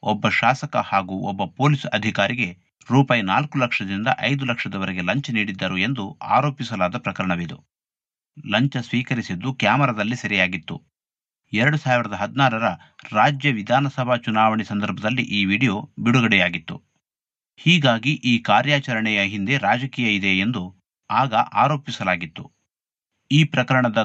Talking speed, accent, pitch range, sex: 100 wpm, native, 105-135 Hz, male